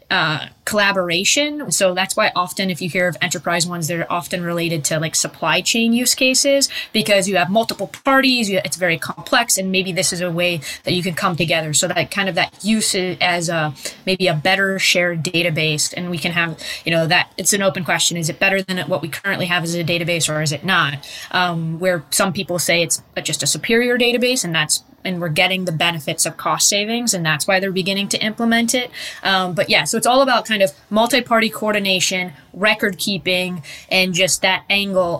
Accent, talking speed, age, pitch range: American, 210 wpm, 20-39, 170-200 Hz